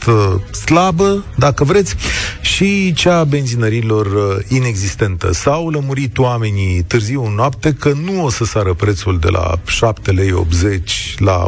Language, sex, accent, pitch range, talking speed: Romanian, male, native, 95-125 Hz, 135 wpm